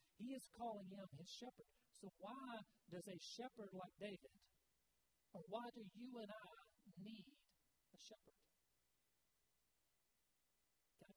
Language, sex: English, male